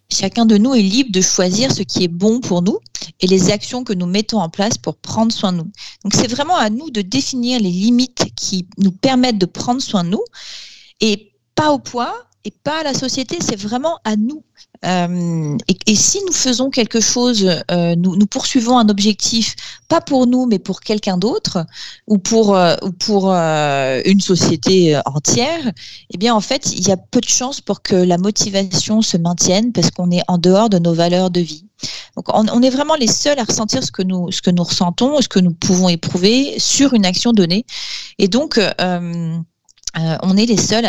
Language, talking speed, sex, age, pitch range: French, 215 wpm, female, 40-59, 180-230 Hz